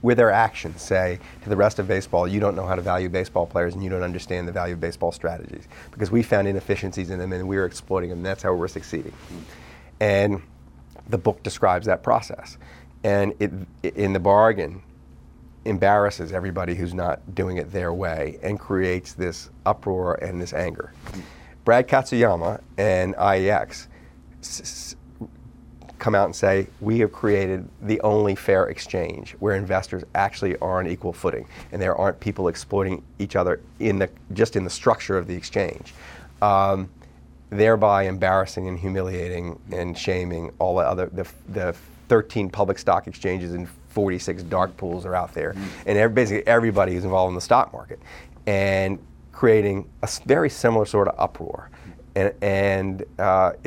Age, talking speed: 40-59, 170 wpm